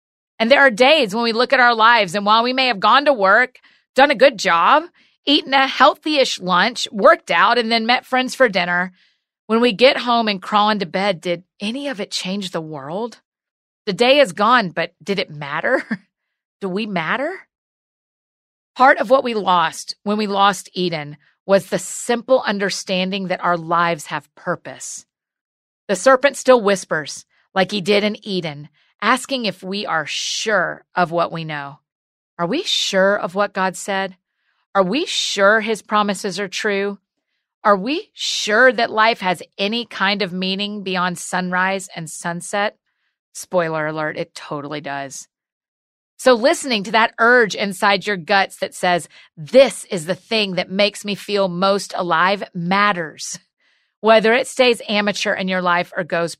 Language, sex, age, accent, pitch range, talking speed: English, female, 40-59, American, 180-235 Hz, 170 wpm